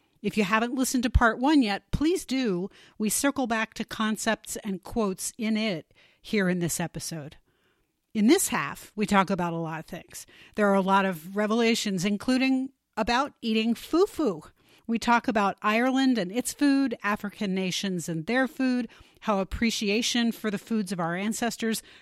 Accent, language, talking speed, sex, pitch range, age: American, English, 175 wpm, female, 190-235 Hz, 40-59